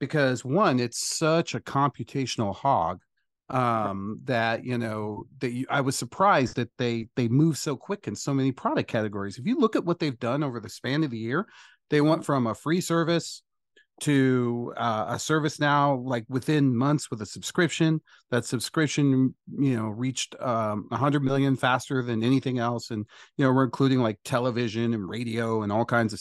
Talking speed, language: 190 wpm, English